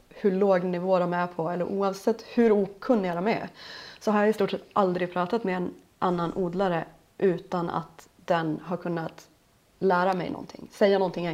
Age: 30-49